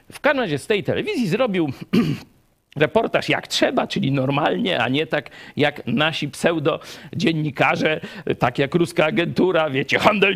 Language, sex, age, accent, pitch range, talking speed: Polish, male, 50-69, native, 125-180 Hz, 140 wpm